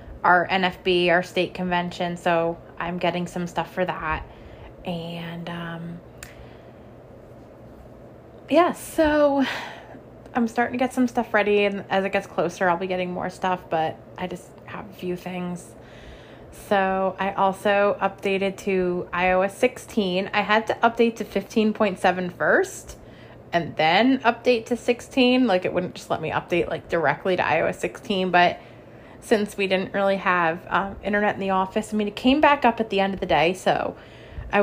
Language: English